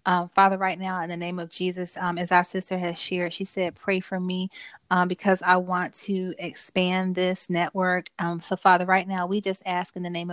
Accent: American